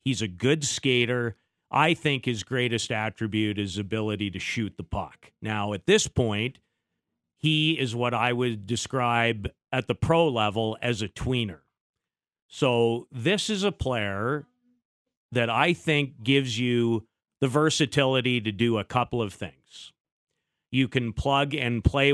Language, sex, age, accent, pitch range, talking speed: English, male, 40-59, American, 115-155 Hz, 150 wpm